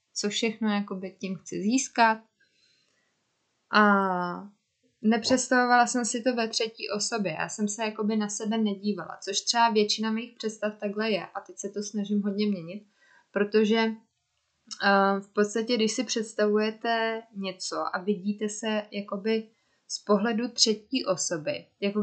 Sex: female